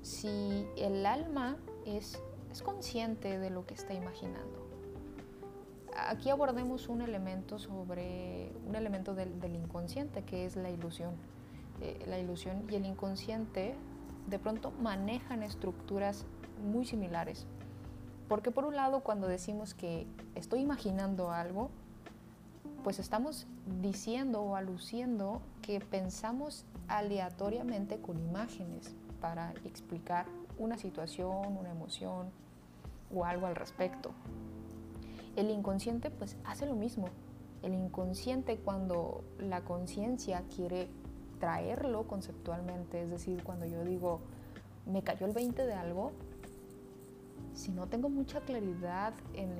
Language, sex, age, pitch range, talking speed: Spanish, female, 30-49, 135-215 Hz, 120 wpm